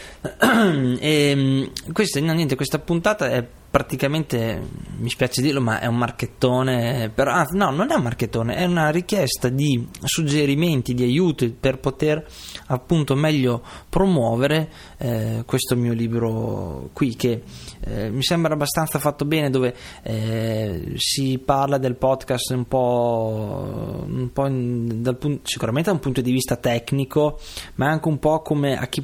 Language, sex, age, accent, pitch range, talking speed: Italian, male, 20-39, native, 120-145 Hz, 145 wpm